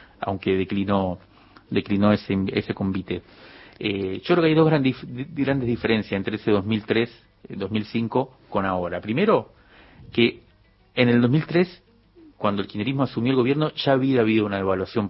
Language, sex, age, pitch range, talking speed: Spanish, male, 40-59, 105-125 Hz, 145 wpm